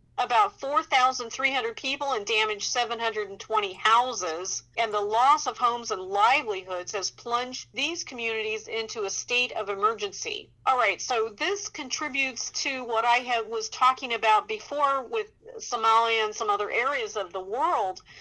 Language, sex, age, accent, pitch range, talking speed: English, female, 50-69, American, 215-350 Hz, 145 wpm